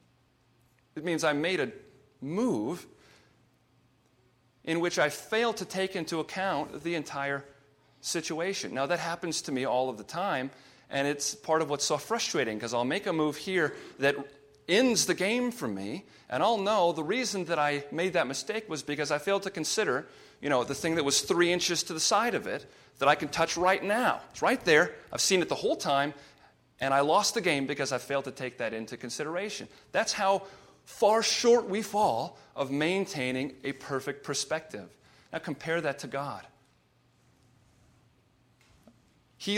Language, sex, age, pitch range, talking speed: English, male, 40-59, 135-185 Hz, 180 wpm